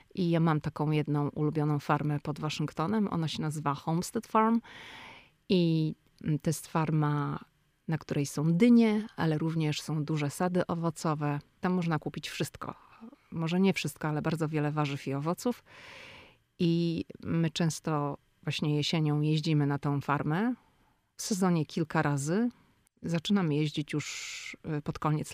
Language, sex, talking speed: Polish, female, 140 wpm